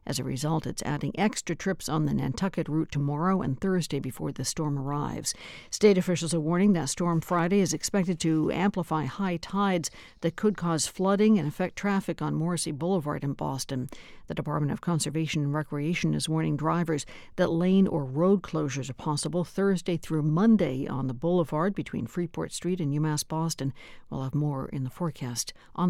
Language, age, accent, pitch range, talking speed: English, 60-79, American, 145-185 Hz, 180 wpm